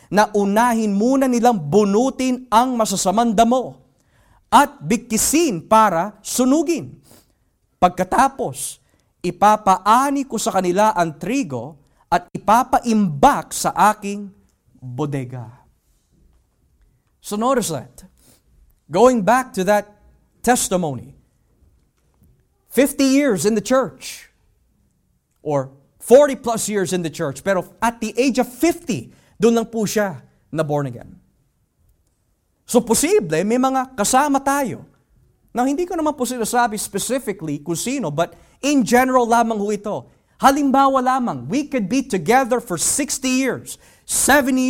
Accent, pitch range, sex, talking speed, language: native, 165-250 Hz, male, 115 wpm, Filipino